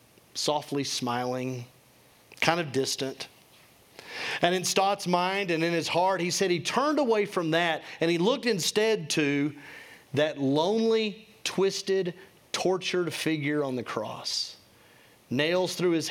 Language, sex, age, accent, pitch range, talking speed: English, male, 40-59, American, 140-185 Hz, 135 wpm